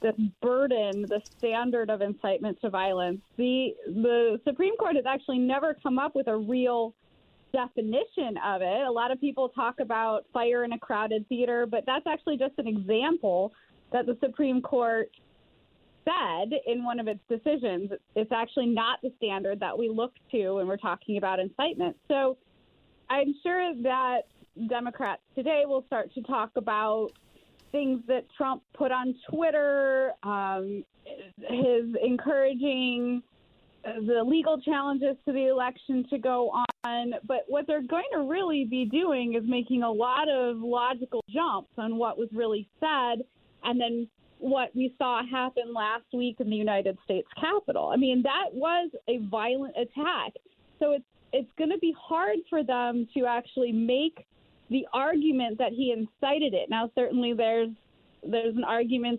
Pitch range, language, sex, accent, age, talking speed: 230-275 Hz, English, female, American, 20-39, 160 wpm